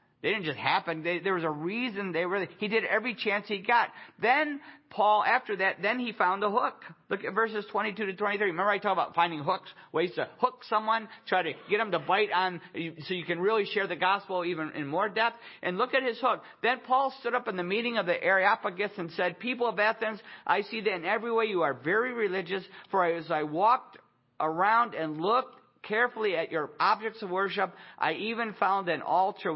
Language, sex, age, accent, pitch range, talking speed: English, male, 50-69, American, 170-215 Hz, 215 wpm